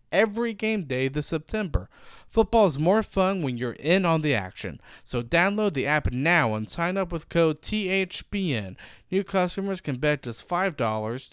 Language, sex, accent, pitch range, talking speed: English, male, American, 130-180 Hz, 170 wpm